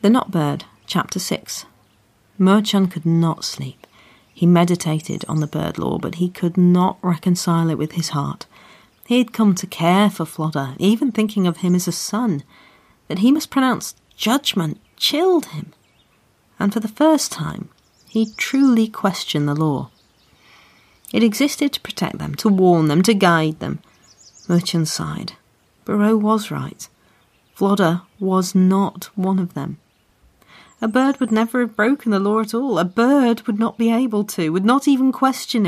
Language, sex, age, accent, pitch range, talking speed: English, female, 40-59, British, 170-230 Hz, 165 wpm